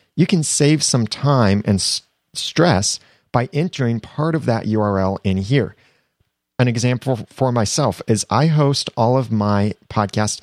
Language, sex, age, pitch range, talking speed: English, male, 40-59, 95-125 Hz, 150 wpm